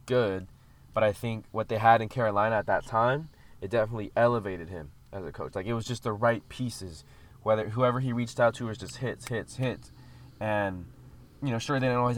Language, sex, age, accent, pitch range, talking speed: English, male, 20-39, American, 95-120 Hz, 215 wpm